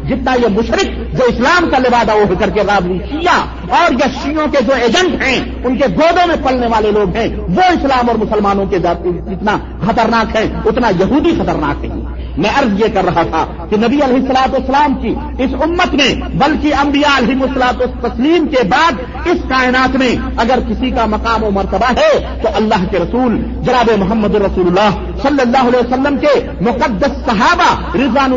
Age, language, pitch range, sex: 50-69, Urdu, 215-285 Hz, male